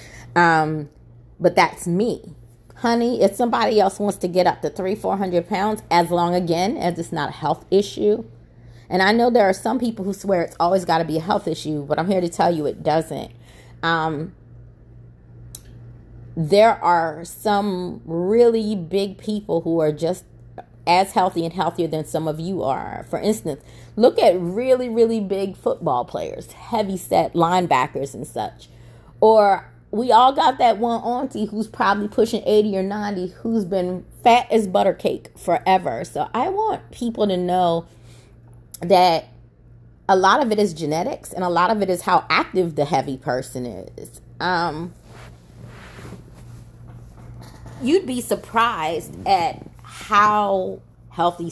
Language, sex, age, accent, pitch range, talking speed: English, female, 30-49, American, 140-205 Hz, 155 wpm